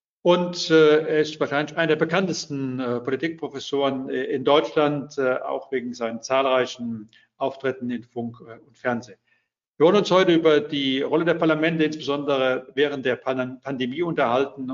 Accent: German